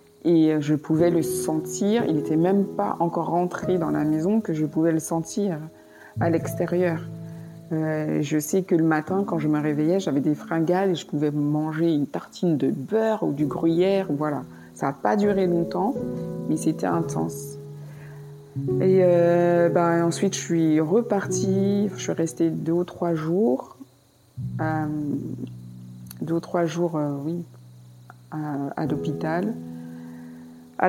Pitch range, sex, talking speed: 140-170 Hz, female, 155 wpm